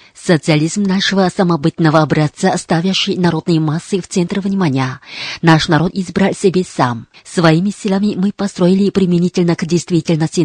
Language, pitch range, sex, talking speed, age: Russian, 165-195 Hz, female, 125 wpm, 30-49